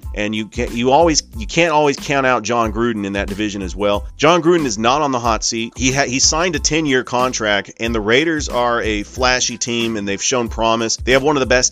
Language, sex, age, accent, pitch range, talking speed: English, male, 30-49, American, 105-125 Hz, 250 wpm